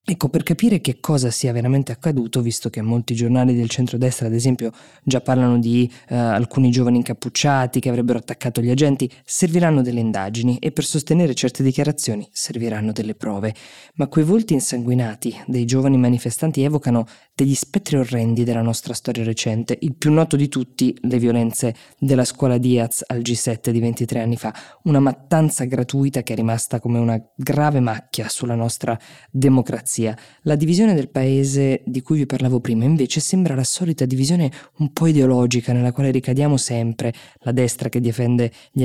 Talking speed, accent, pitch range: 170 wpm, native, 120-140 Hz